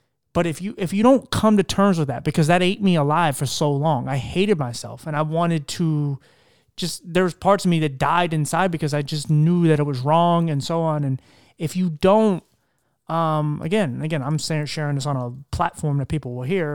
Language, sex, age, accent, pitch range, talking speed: English, male, 30-49, American, 145-175 Hz, 220 wpm